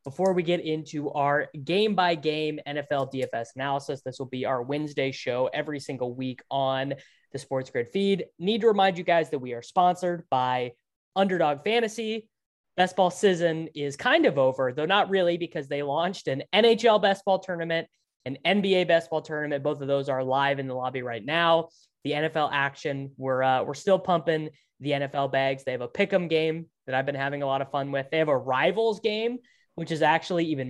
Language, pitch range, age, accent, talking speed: English, 135-175 Hz, 20-39, American, 200 wpm